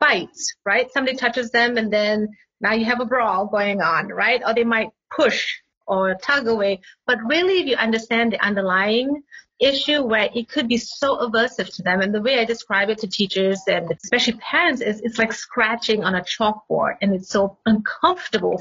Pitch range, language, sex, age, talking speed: 200-260 Hz, English, female, 30-49, 195 wpm